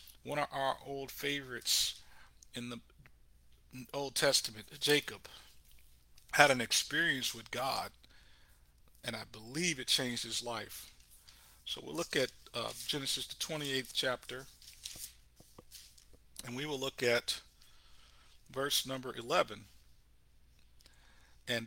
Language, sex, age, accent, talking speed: English, male, 50-69, American, 110 wpm